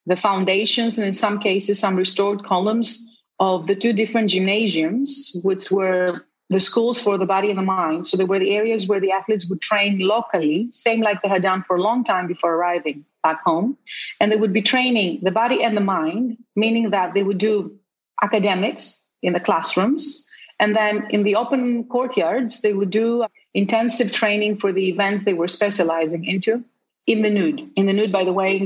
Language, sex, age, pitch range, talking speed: English, female, 40-59, 190-225 Hz, 200 wpm